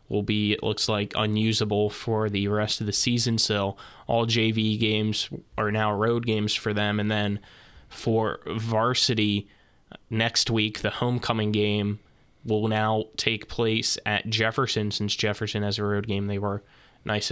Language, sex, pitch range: English, male, 105-115 Hz